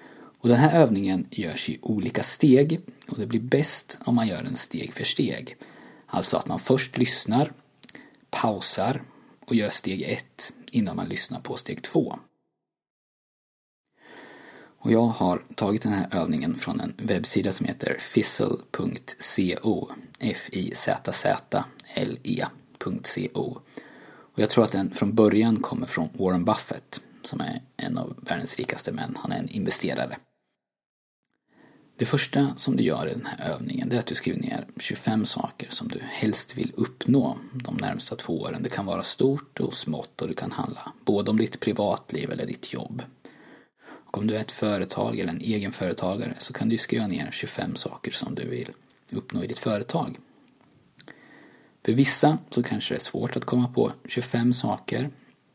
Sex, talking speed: male, 160 wpm